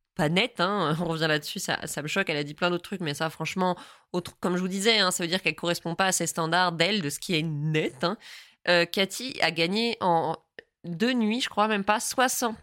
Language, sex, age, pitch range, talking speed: French, female, 20-39, 170-225 Hz, 255 wpm